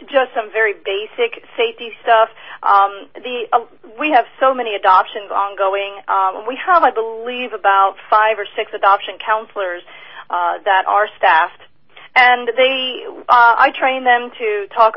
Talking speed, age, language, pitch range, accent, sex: 155 wpm, 30-49, English, 200-250 Hz, American, female